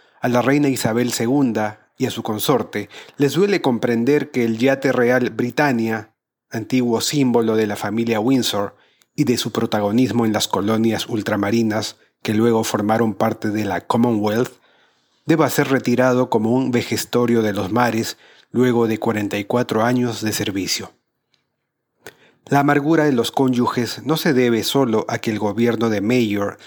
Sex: male